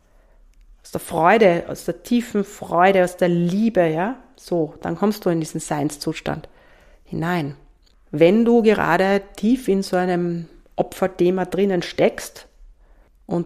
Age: 40-59